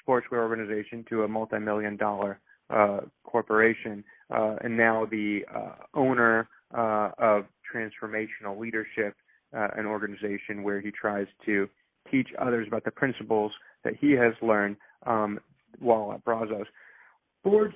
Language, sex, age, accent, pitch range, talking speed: English, male, 30-49, American, 115-165 Hz, 130 wpm